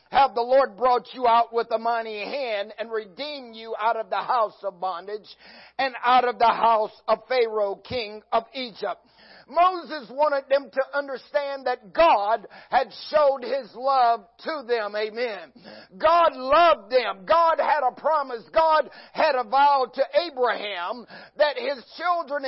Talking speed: 160 wpm